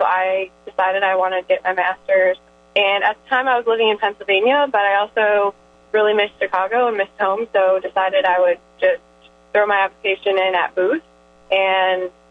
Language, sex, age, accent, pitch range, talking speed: English, female, 20-39, American, 185-210 Hz, 185 wpm